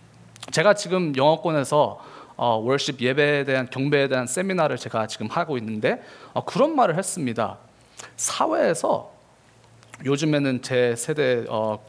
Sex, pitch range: male, 110-145 Hz